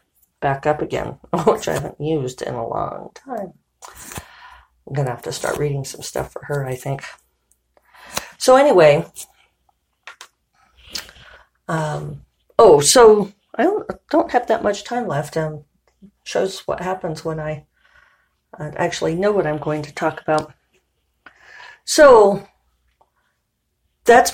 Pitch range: 140-175 Hz